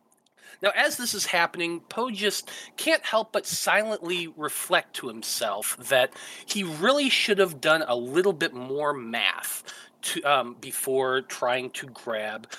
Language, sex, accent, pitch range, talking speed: English, male, American, 145-215 Hz, 145 wpm